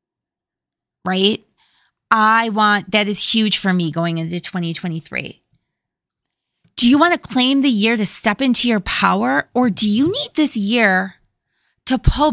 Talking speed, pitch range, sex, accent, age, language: 150 wpm, 195-265 Hz, female, American, 30-49, English